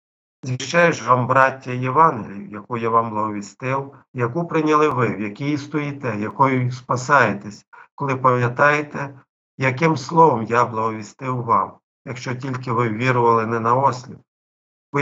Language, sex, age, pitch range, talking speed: Ukrainian, male, 50-69, 115-135 Hz, 125 wpm